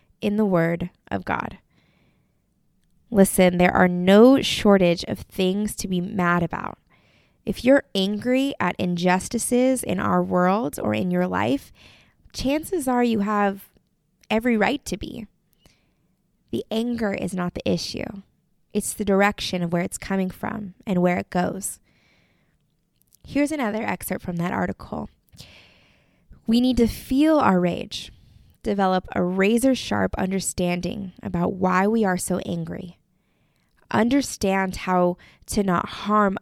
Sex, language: female, English